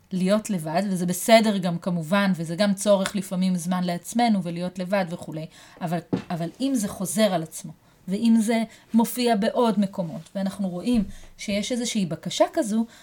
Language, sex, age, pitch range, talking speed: Hebrew, female, 30-49, 175-225 Hz, 150 wpm